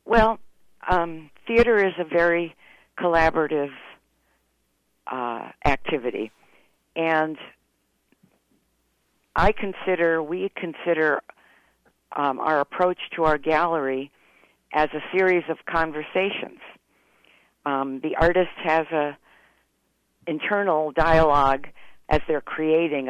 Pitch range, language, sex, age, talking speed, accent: 145-175 Hz, English, female, 50-69, 90 wpm, American